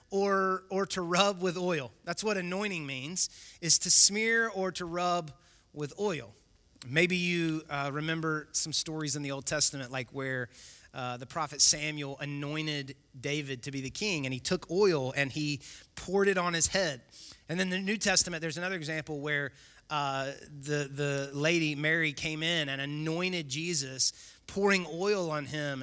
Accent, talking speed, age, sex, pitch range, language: American, 170 wpm, 30-49, male, 150-195 Hz, English